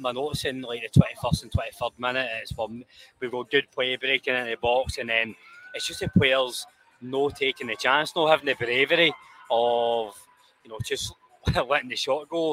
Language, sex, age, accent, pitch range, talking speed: English, male, 20-39, British, 120-155 Hz, 185 wpm